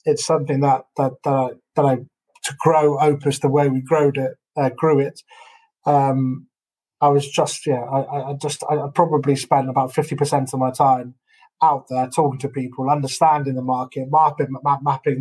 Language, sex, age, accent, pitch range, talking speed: English, male, 20-39, British, 130-150 Hz, 180 wpm